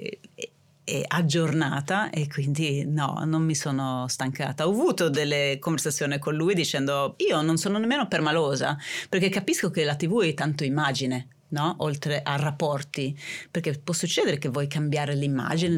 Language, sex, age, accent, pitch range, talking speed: Italian, female, 30-49, native, 140-175 Hz, 150 wpm